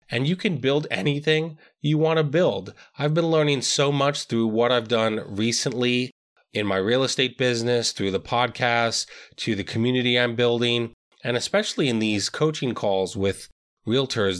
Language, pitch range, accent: English, 110-140 Hz, American